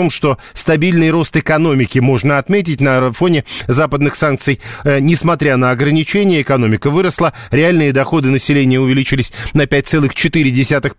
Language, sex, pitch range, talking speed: Russian, male, 135-165 Hz, 115 wpm